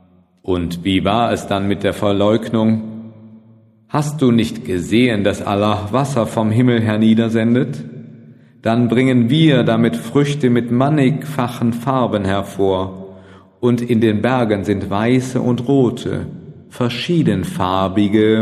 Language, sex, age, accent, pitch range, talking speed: German, male, 40-59, German, 90-115 Hz, 115 wpm